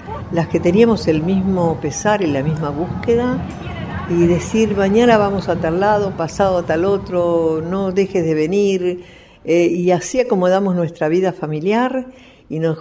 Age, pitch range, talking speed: 60-79, 140-200 Hz, 160 wpm